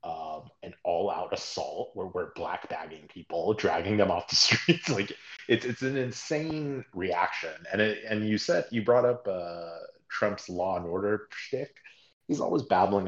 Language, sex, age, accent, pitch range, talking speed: English, male, 30-49, American, 90-125 Hz, 170 wpm